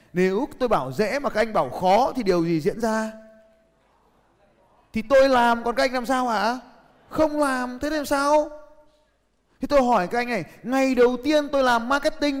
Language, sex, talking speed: Vietnamese, male, 195 wpm